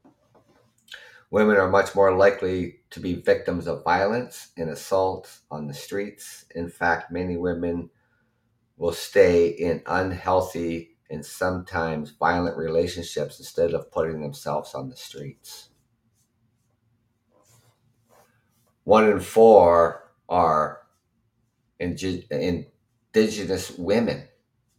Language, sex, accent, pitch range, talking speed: English, male, American, 85-115 Hz, 95 wpm